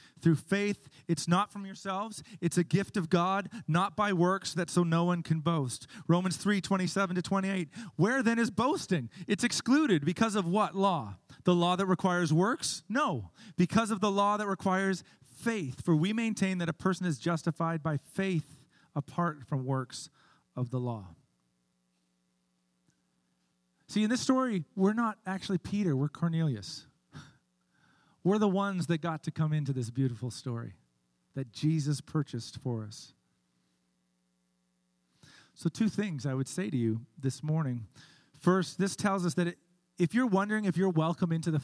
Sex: male